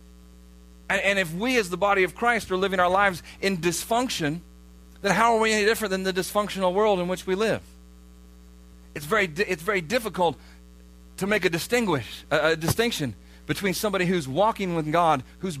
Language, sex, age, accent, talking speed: English, male, 40-59, American, 185 wpm